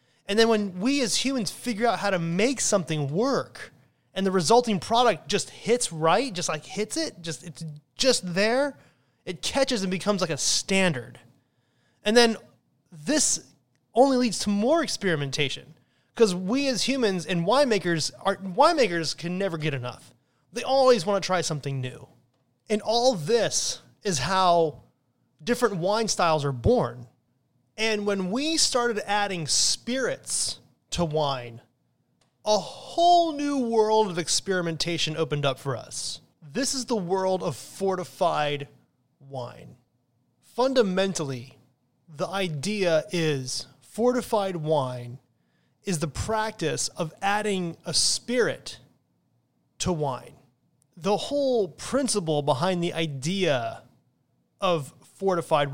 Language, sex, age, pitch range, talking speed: English, male, 30-49, 145-220 Hz, 130 wpm